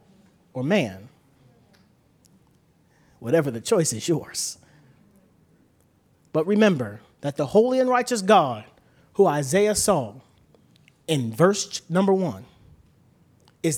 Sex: male